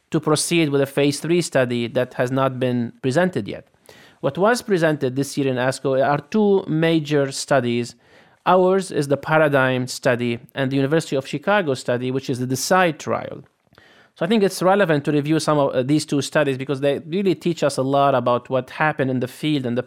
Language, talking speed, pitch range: English, 200 wpm, 130-175 Hz